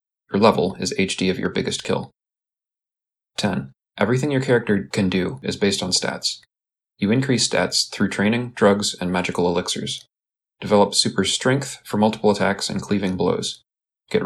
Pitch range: 95-110 Hz